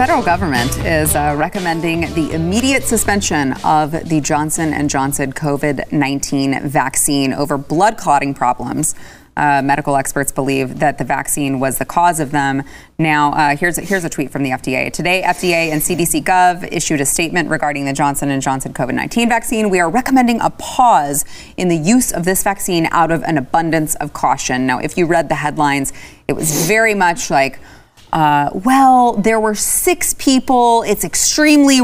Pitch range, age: 145-200 Hz, 30-49